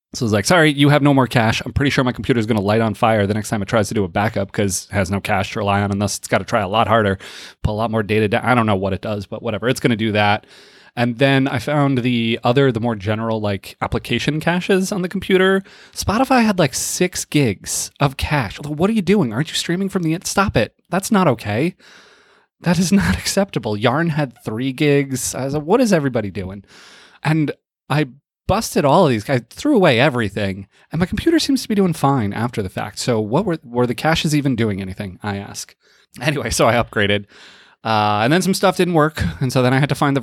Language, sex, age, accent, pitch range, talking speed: English, male, 30-49, American, 105-150 Hz, 255 wpm